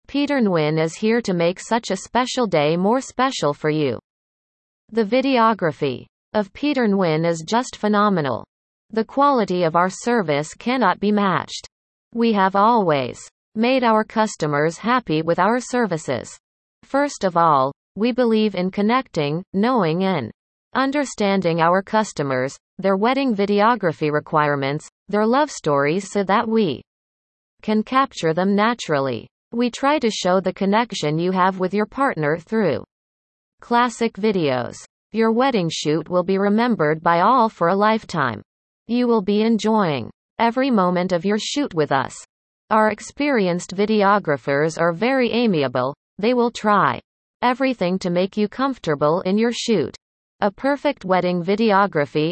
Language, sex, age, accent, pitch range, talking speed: English, female, 40-59, American, 170-235 Hz, 140 wpm